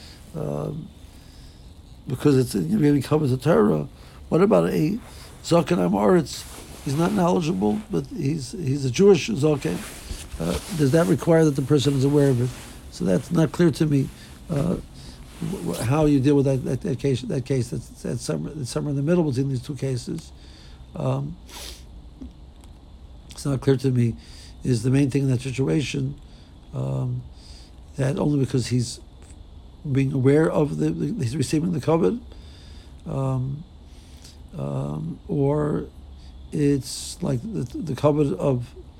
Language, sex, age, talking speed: English, male, 60-79, 155 wpm